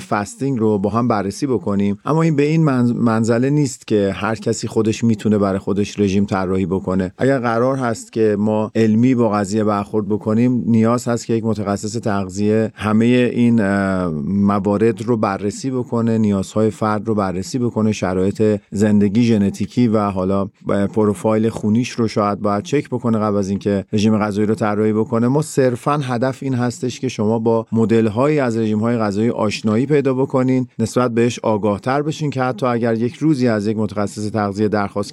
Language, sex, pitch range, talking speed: Persian, male, 105-125 Hz, 170 wpm